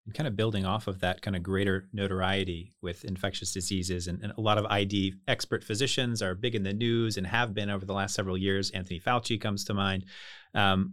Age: 30-49